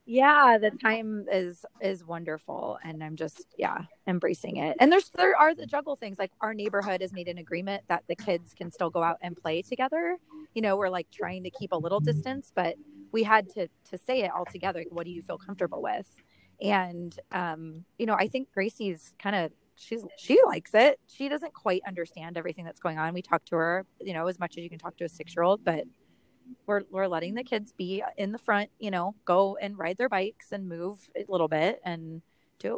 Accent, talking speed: American, 230 wpm